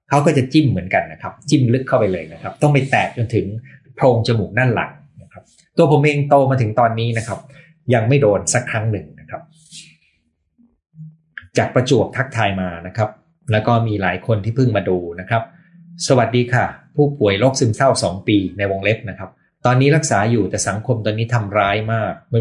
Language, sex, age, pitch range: Thai, male, 20-39, 95-130 Hz